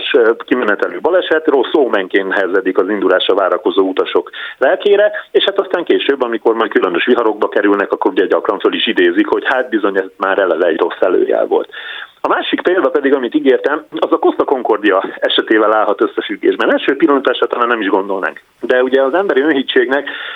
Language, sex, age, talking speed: Hungarian, male, 30-49, 170 wpm